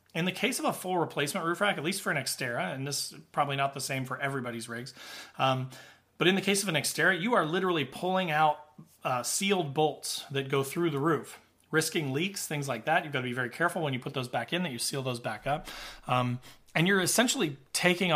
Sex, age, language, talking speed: male, 30-49, English, 240 wpm